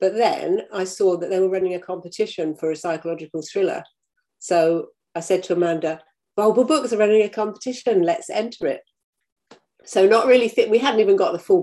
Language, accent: English, British